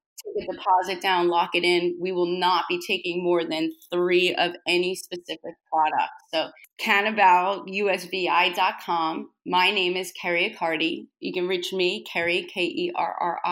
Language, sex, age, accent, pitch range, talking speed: English, female, 30-49, American, 170-205 Hz, 175 wpm